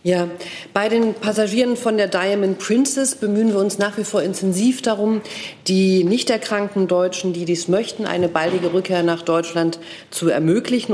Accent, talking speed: German, 165 wpm